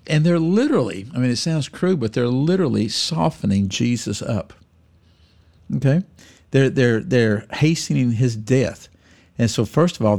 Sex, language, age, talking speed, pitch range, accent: male, English, 50-69, 155 wpm, 100-125 Hz, American